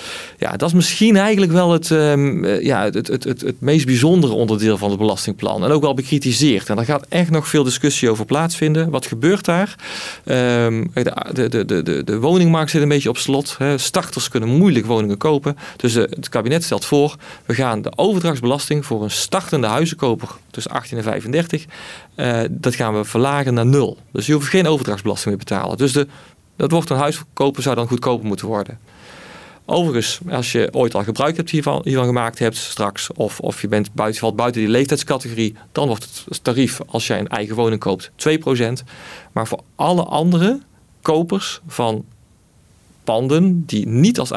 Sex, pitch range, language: male, 115-155 Hz, Dutch